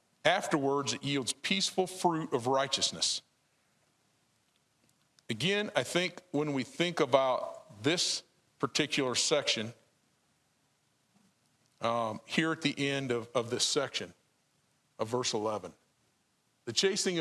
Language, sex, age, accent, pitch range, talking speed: English, male, 50-69, American, 120-160 Hz, 110 wpm